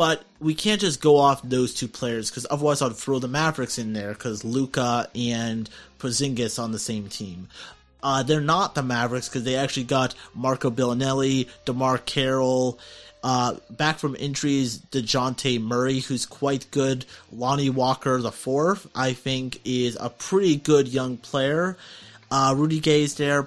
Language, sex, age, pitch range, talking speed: English, male, 30-49, 120-150 Hz, 165 wpm